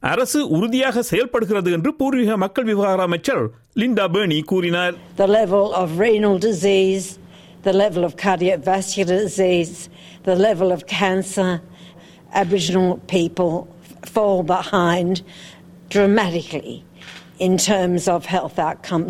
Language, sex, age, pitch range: Tamil, female, 60-79, 175-230 Hz